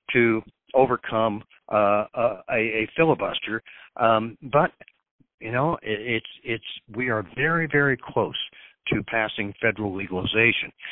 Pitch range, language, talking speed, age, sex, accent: 110-125 Hz, English, 120 wpm, 60-79, male, American